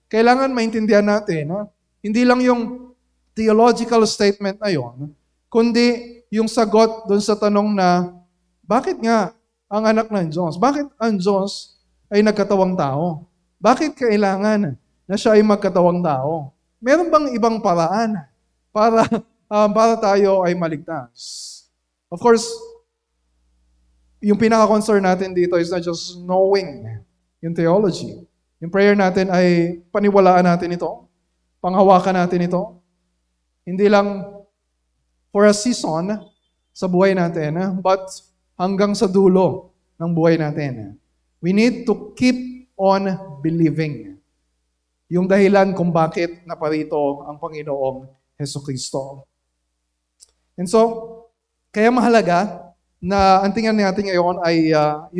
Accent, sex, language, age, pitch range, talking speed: native, male, Filipino, 20-39, 160-215 Hz, 120 wpm